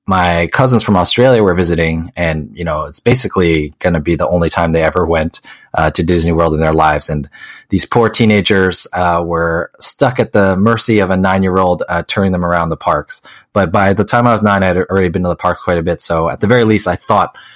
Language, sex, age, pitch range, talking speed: English, male, 30-49, 85-105 Hz, 235 wpm